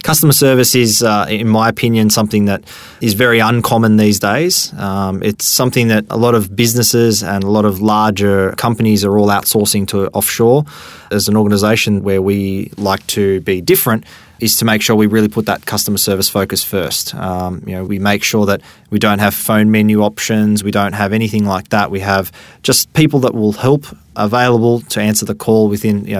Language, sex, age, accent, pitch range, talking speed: English, male, 20-39, Australian, 100-115 Hz, 200 wpm